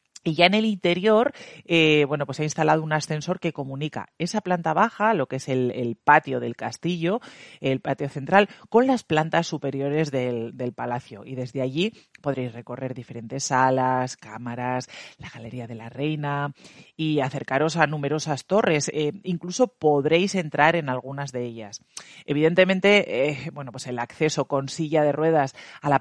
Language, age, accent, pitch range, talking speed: Spanish, 40-59, Spanish, 125-160 Hz, 170 wpm